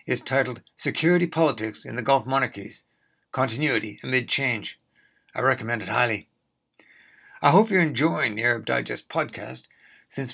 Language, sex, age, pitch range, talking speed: English, male, 60-79, 120-155 Hz, 140 wpm